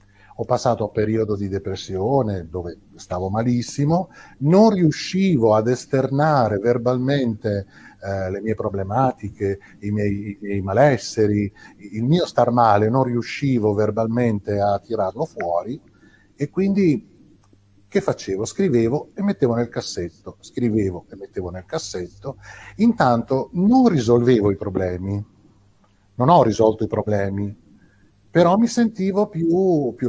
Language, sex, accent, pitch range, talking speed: Italian, male, native, 100-150 Hz, 120 wpm